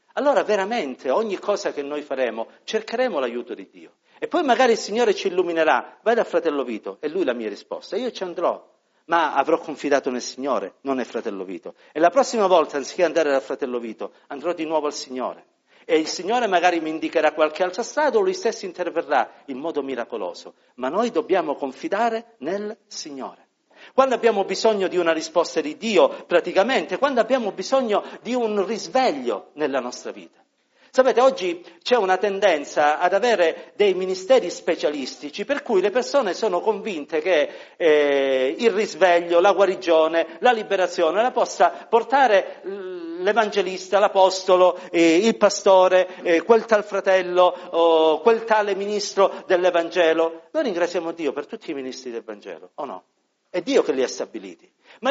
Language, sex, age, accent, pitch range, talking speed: Italian, male, 50-69, native, 170-240 Hz, 160 wpm